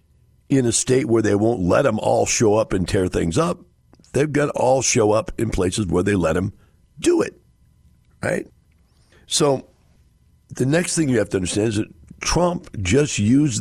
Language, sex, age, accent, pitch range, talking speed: English, male, 60-79, American, 90-135 Hz, 190 wpm